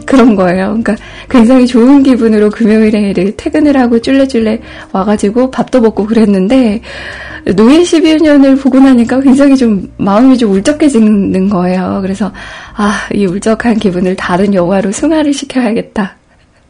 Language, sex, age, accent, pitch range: Korean, female, 20-39, native, 195-260 Hz